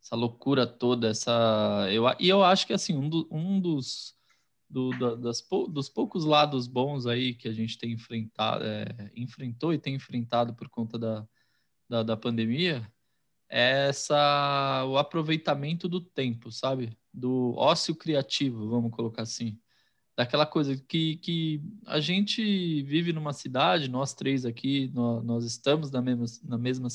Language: Portuguese